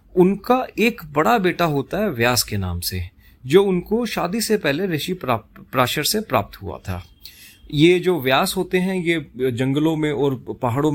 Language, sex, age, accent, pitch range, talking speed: Hindi, male, 30-49, native, 125-180 Hz, 175 wpm